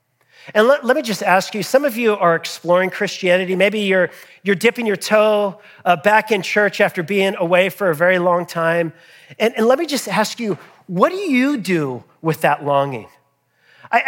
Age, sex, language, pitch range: 40-59, male, English, 185-235 Hz